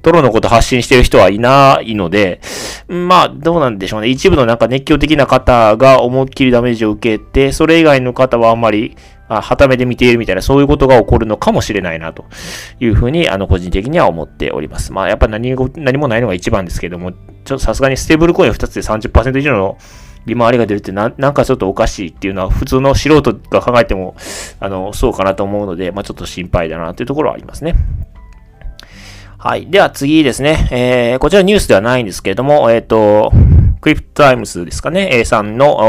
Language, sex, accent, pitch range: Japanese, male, native, 100-135 Hz